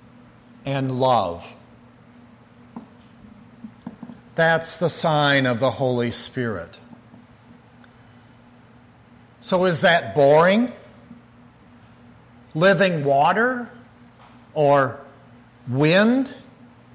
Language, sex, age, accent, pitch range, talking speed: English, male, 50-69, American, 120-170 Hz, 60 wpm